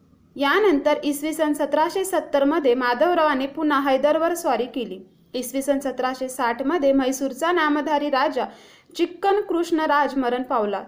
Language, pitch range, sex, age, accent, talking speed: Marathi, 255-310 Hz, female, 20-39, native, 130 wpm